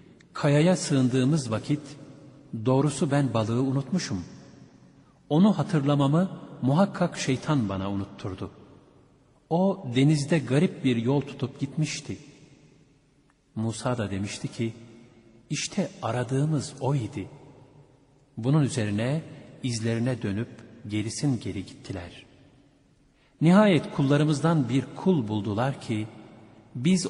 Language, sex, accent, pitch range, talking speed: Turkish, male, native, 115-145 Hz, 95 wpm